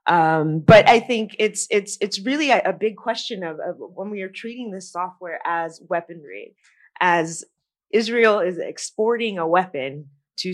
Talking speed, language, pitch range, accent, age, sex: 165 wpm, English, 155-185 Hz, American, 20-39, female